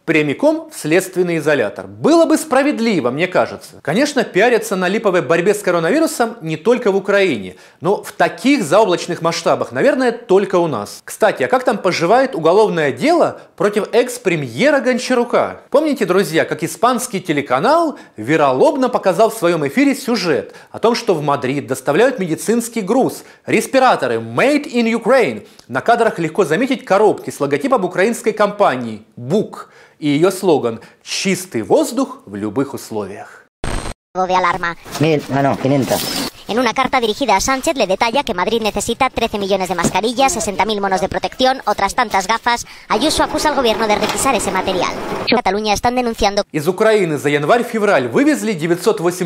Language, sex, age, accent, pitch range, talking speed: Russian, male, 30-49, native, 175-245 Hz, 105 wpm